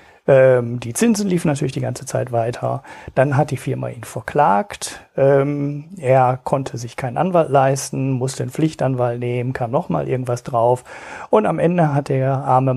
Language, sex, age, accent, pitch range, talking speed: German, male, 40-59, German, 125-155 Hz, 160 wpm